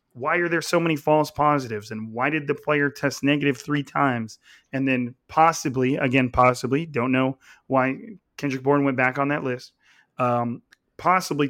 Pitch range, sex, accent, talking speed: 125-145 Hz, male, American, 170 wpm